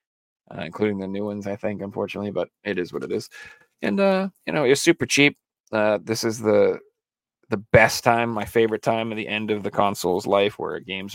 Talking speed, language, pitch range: 215 wpm, English, 100-145 Hz